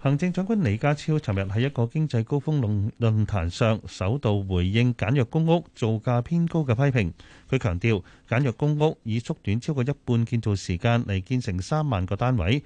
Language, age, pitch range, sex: Chinese, 30-49, 100-135 Hz, male